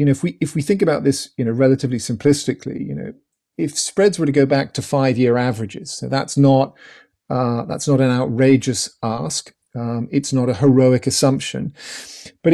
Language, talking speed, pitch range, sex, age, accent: English, 175 wpm, 125-145 Hz, male, 40-59, British